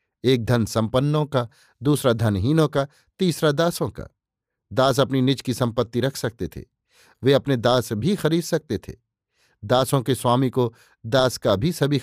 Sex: male